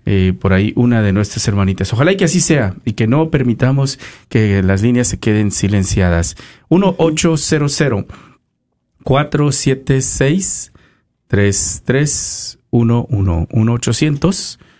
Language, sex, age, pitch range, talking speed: Spanish, male, 40-59, 110-135 Hz, 95 wpm